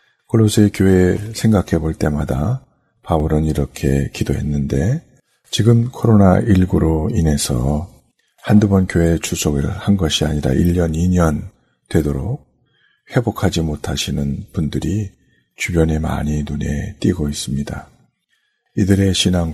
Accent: native